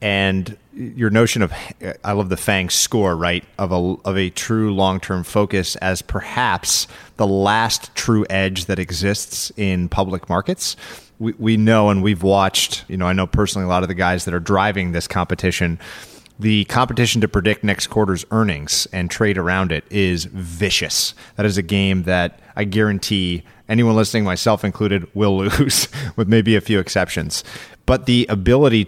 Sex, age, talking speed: male, 30-49, 175 wpm